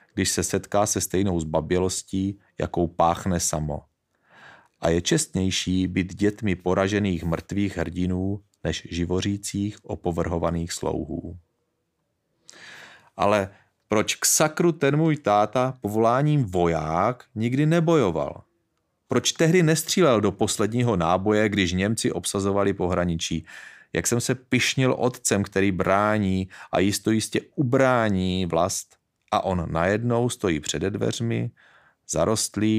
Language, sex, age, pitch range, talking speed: Czech, male, 30-49, 90-110 Hz, 110 wpm